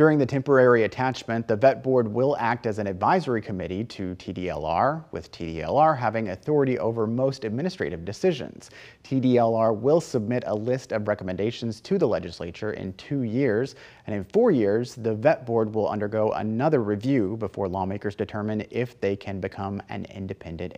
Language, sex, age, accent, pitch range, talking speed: English, male, 30-49, American, 110-145 Hz, 160 wpm